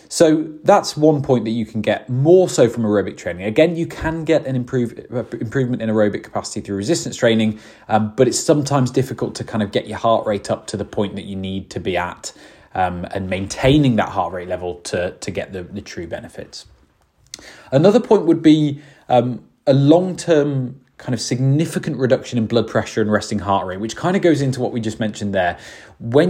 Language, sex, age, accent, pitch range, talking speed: English, male, 20-39, British, 105-135 Hz, 205 wpm